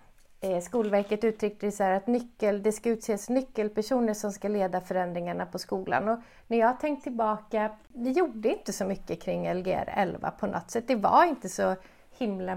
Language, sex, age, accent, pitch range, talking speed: Swedish, female, 30-49, native, 200-240 Hz, 170 wpm